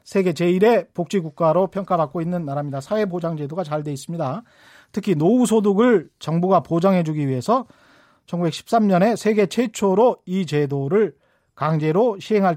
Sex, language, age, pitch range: male, Korean, 40-59, 155-220 Hz